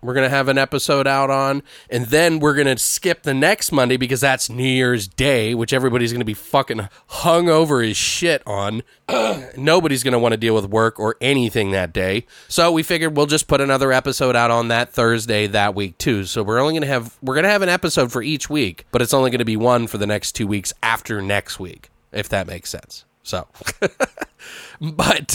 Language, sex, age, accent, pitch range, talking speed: English, male, 30-49, American, 120-160 Hz, 225 wpm